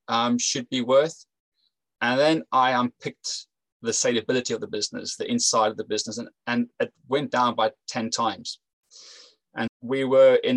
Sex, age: male, 20-39